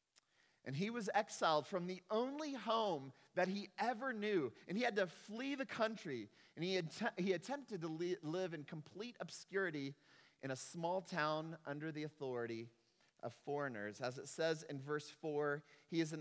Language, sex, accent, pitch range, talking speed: English, male, American, 130-185 Hz, 180 wpm